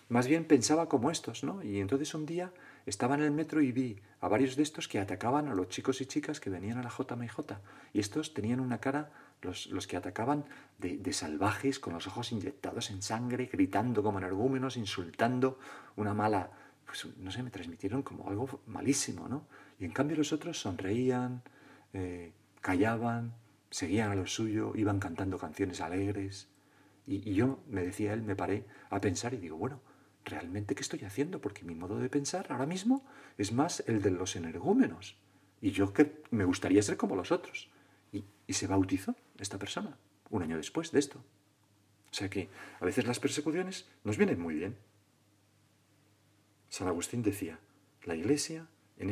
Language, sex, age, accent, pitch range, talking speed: Spanish, male, 40-59, Spanish, 100-140 Hz, 180 wpm